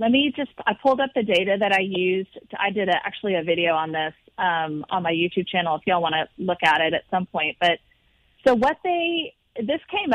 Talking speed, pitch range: 240 wpm, 185-230 Hz